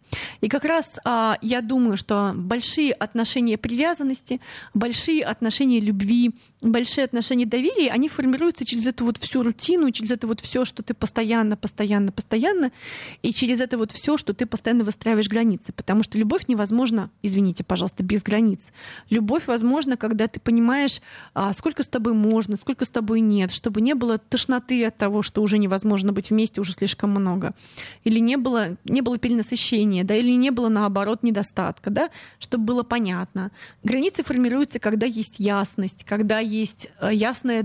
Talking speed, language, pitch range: 165 wpm, Russian, 210-245 Hz